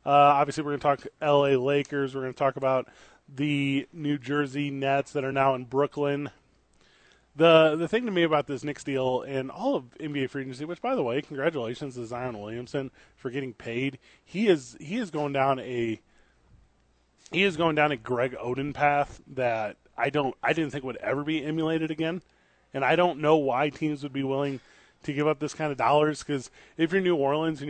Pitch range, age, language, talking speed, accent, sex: 135-155 Hz, 20-39, English, 210 wpm, American, male